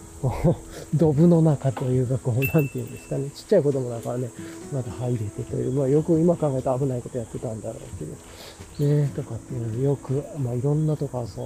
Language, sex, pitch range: Japanese, male, 115-160 Hz